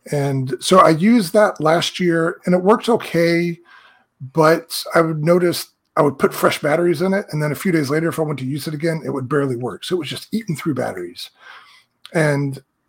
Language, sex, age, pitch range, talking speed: English, male, 40-59, 135-170 Hz, 220 wpm